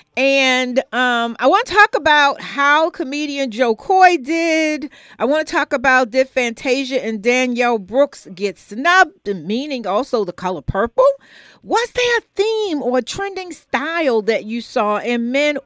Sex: female